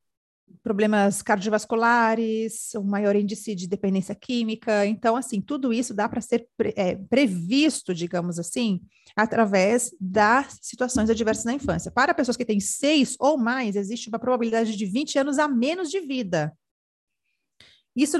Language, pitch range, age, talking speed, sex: Portuguese, 210-280 Hz, 30-49, 145 wpm, female